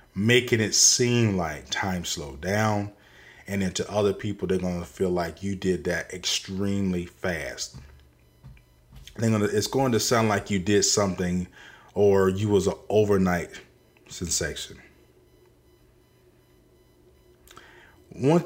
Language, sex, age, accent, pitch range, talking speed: English, male, 30-49, American, 90-110 Hz, 120 wpm